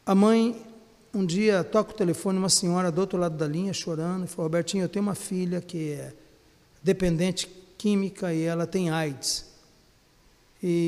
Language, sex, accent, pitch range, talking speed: Portuguese, male, Brazilian, 175-230 Hz, 170 wpm